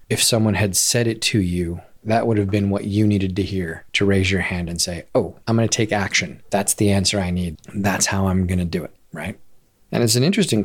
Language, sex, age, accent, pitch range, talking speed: English, male, 30-49, American, 95-115 Hz, 255 wpm